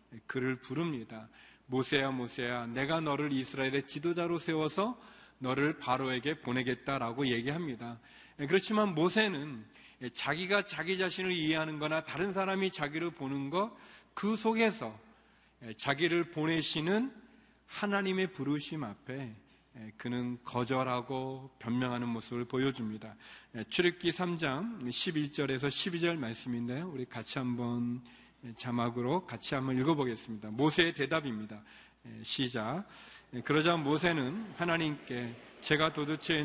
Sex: male